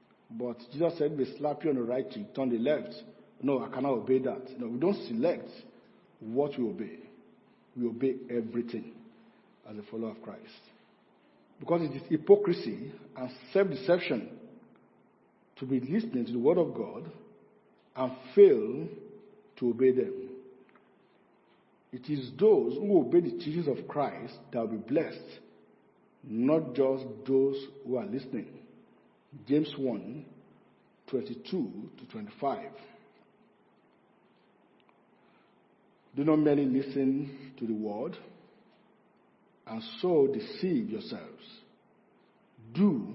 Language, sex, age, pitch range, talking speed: English, male, 50-69, 125-210 Hz, 125 wpm